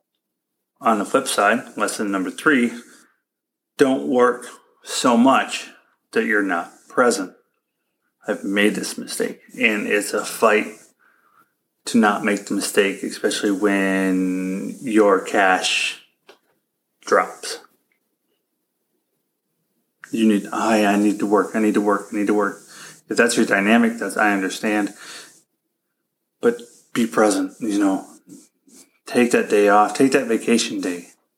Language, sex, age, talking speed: English, male, 30-49, 130 wpm